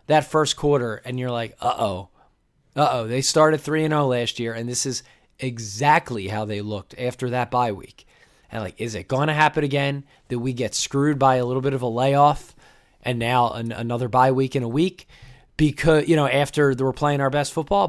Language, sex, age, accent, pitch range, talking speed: English, male, 20-39, American, 125-155 Hz, 215 wpm